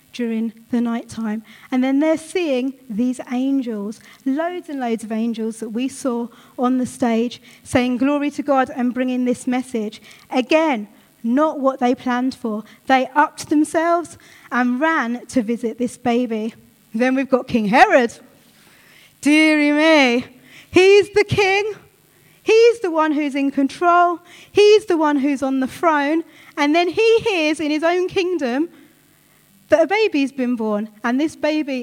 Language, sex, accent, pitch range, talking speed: English, female, British, 235-300 Hz, 155 wpm